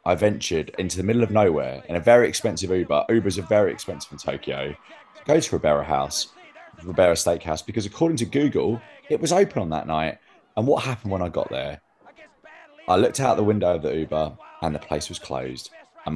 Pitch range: 80-100 Hz